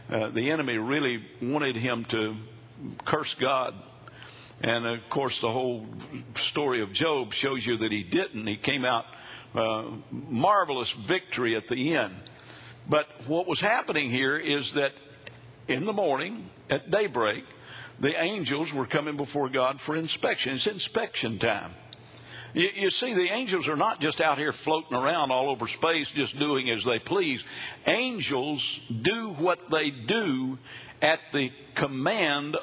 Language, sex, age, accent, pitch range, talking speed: English, male, 60-79, American, 130-185 Hz, 150 wpm